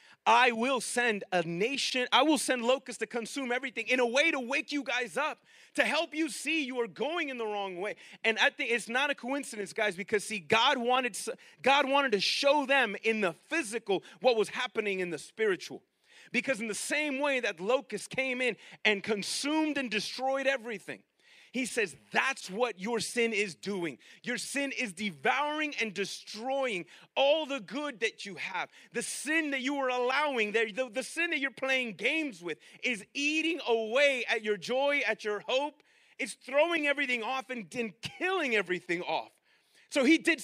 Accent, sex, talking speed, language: American, male, 190 wpm, English